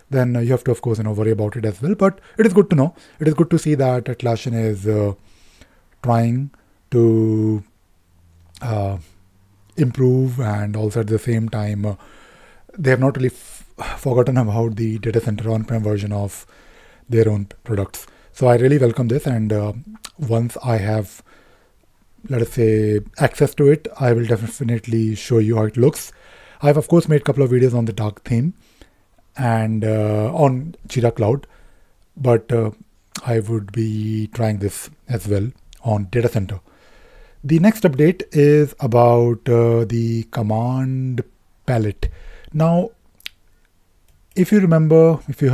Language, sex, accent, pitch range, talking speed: English, male, Indian, 110-140 Hz, 160 wpm